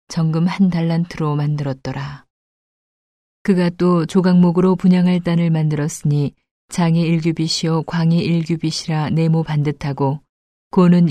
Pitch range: 150-175 Hz